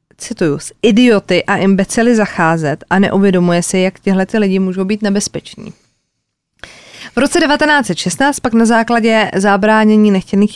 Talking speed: 125 wpm